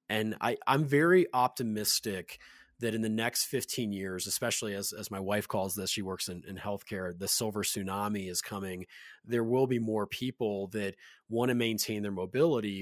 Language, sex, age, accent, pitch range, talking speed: English, male, 30-49, American, 100-110 Hz, 185 wpm